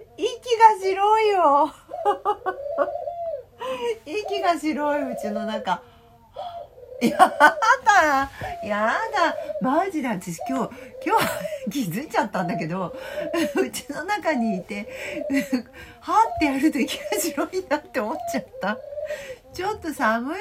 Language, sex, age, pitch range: Japanese, female, 40-59, 210-345 Hz